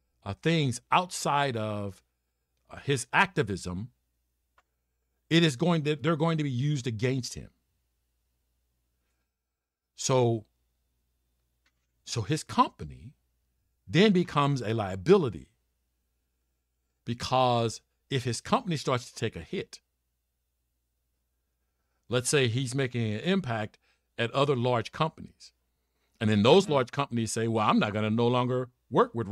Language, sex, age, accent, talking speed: English, male, 50-69, American, 125 wpm